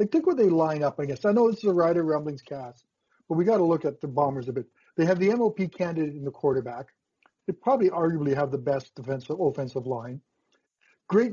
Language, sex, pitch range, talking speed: English, male, 140-190 Hz, 235 wpm